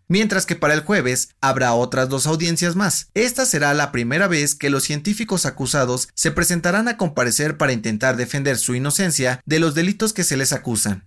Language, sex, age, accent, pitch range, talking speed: Spanish, male, 30-49, Mexican, 125-170 Hz, 190 wpm